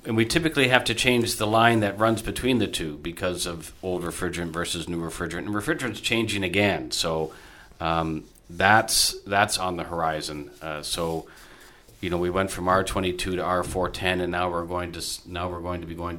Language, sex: English, male